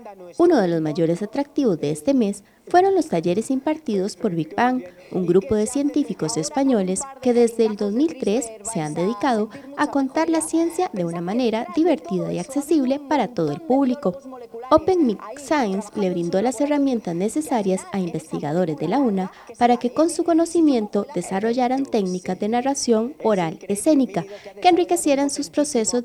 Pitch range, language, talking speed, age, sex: 180-275 Hz, Spanish, 160 wpm, 30-49, female